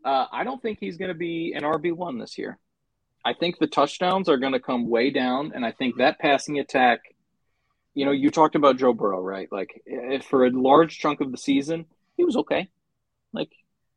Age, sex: 20-39, male